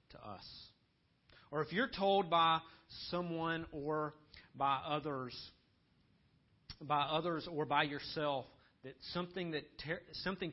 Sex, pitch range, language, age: male, 135-175 Hz, English, 40-59